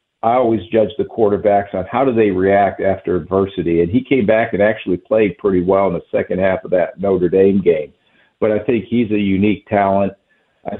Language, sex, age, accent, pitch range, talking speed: English, male, 50-69, American, 90-105 Hz, 210 wpm